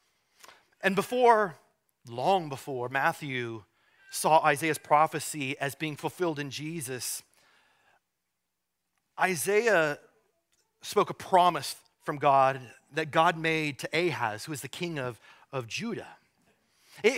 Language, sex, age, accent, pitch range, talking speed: English, male, 30-49, American, 150-215 Hz, 110 wpm